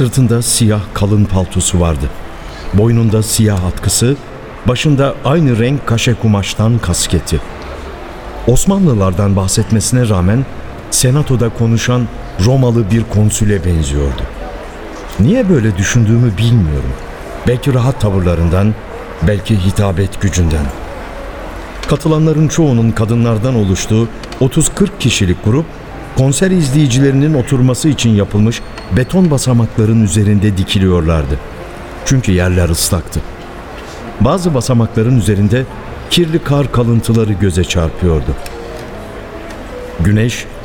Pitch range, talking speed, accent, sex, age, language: 95-120 Hz, 90 wpm, native, male, 60-79, Turkish